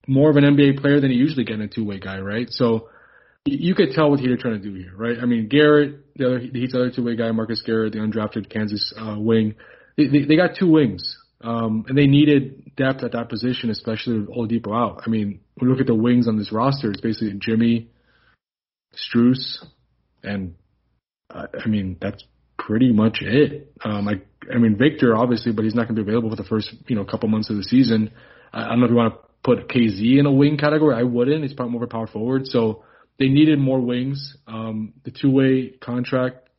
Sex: male